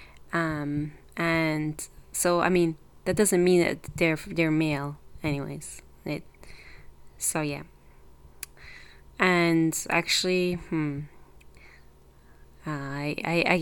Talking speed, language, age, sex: 100 wpm, English, 20-39, female